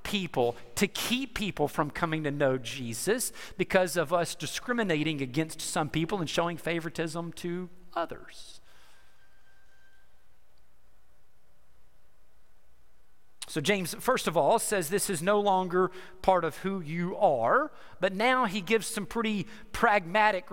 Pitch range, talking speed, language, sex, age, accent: 160-240 Hz, 125 wpm, English, male, 40-59, American